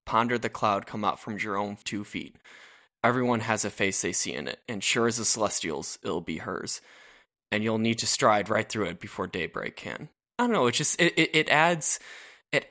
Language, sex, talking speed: English, male, 225 wpm